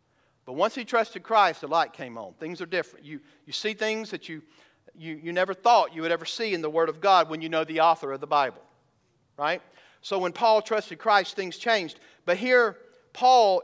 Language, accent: English, American